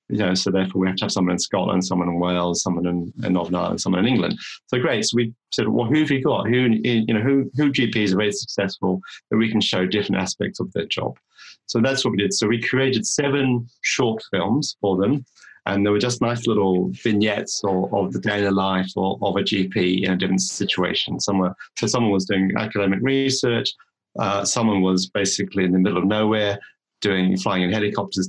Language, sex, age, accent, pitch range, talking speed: English, male, 30-49, British, 95-115 Hz, 220 wpm